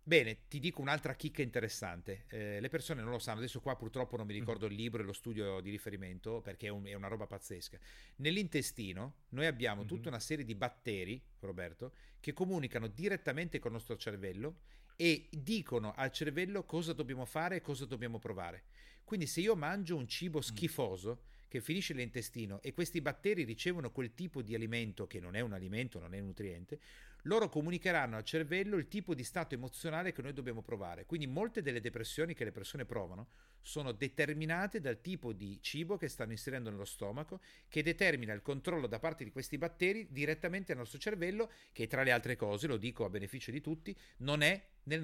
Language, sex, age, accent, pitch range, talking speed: Italian, male, 40-59, native, 115-165 Hz, 190 wpm